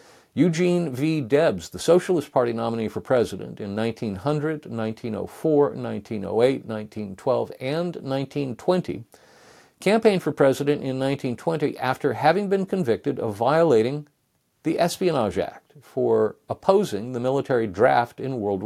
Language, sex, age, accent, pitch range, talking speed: English, male, 50-69, American, 105-145 Hz, 120 wpm